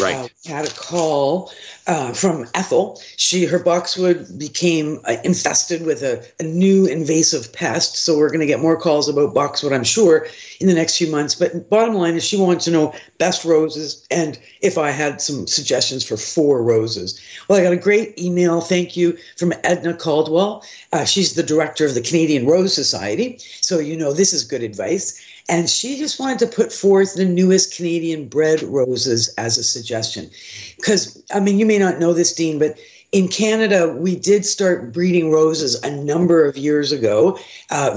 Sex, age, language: female, 50-69, English